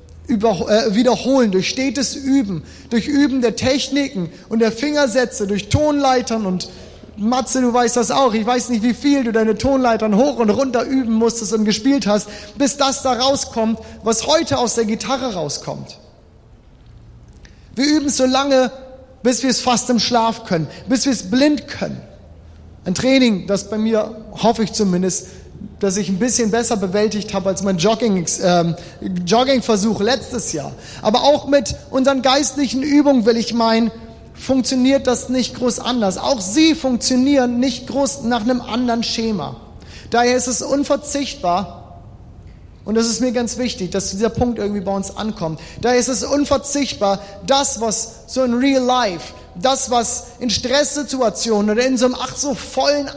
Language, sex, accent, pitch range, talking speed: German, male, German, 205-265 Hz, 165 wpm